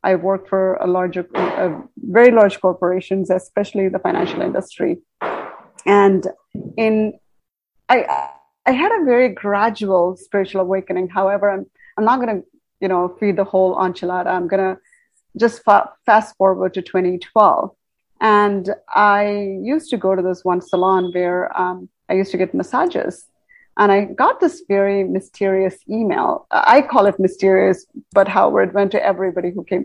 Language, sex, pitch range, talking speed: English, female, 185-230 Hz, 155 wpm